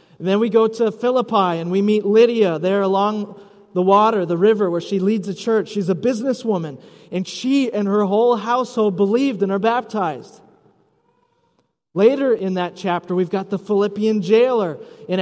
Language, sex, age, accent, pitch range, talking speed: English, male, 30-49, American, 185-235 Hz, 170 wpm